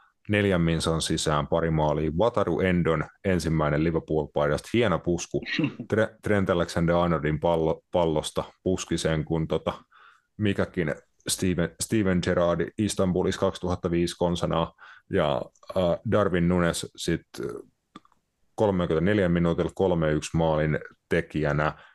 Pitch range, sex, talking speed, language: 80-95 Hz, male, 95 wpm, Finnish